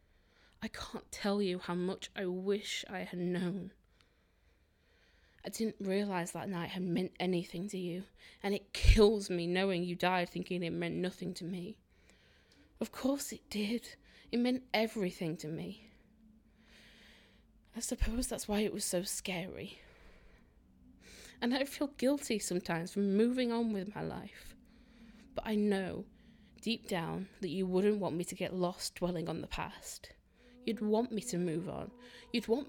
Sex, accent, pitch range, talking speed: female, British, 175-225 Hz, 160 wpm